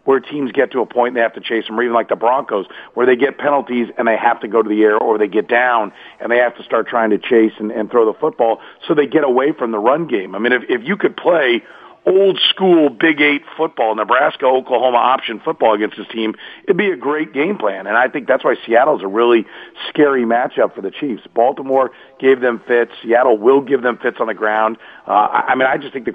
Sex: male